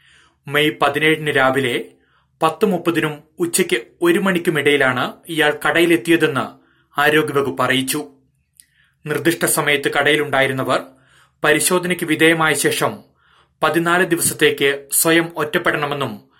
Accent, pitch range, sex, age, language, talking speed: native, 140-160 Hz, male, 30-49, Malayalam, 75 wpm